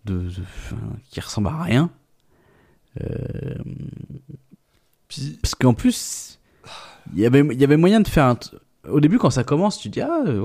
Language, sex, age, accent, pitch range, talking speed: French, male, 20-39, French, 100-140 Hz, 165 wpm